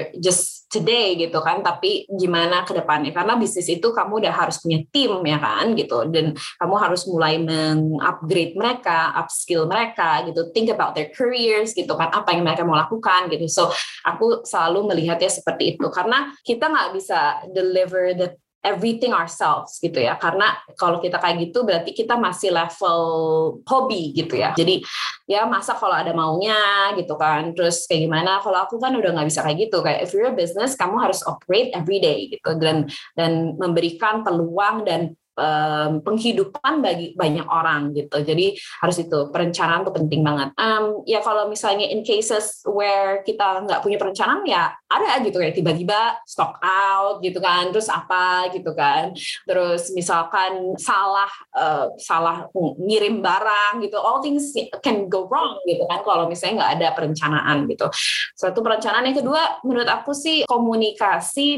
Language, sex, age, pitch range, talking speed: Indonesian, female, 20-39, 165-225 Hz, 165 wpm